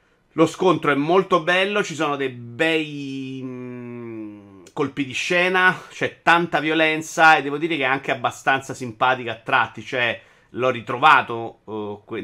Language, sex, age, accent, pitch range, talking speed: Italian, male, 30-49, native, 105-130 Hz, 140 wpm